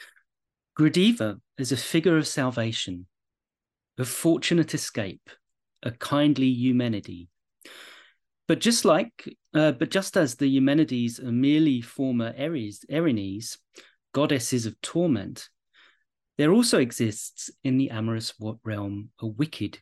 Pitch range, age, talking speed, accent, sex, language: 110-135 Hz, 30-49, 110 wpm, British, male, English